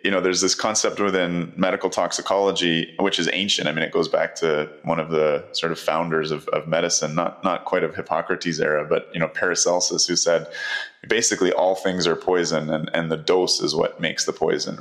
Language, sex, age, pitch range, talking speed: English, male, 20-39, 80-90 Hz, 210 wpm